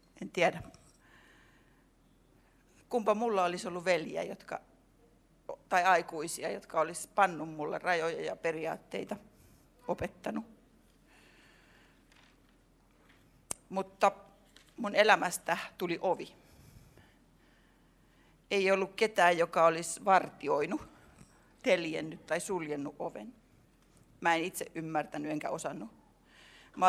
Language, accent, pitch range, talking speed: Finnish, native, 160-195 Hz, 90 wpm